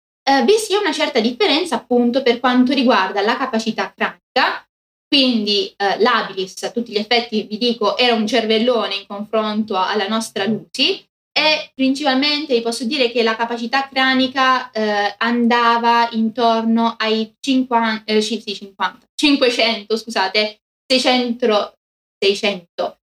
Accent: native